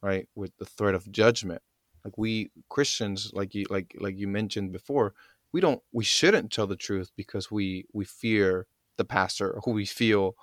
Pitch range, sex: 95-115 Hz, male